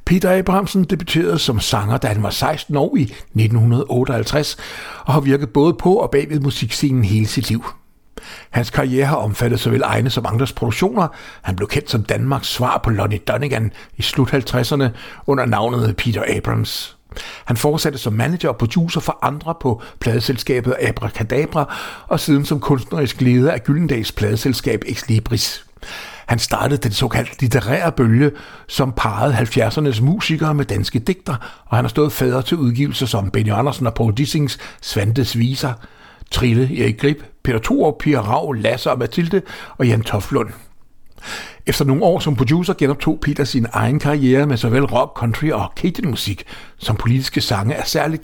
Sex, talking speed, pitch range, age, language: male, 160 wpm, 115-145 Hz, 60-79, Danish